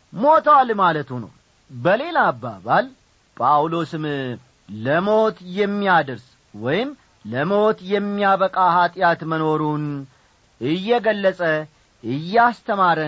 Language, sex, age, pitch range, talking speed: Amharic, male, 40-59, 145-215 Hz, 70 wpm